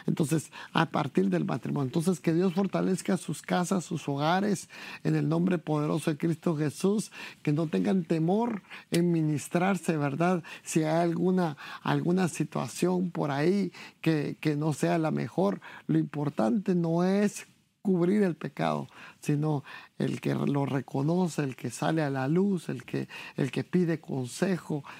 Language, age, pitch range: English, 50-69, 150-180 Hz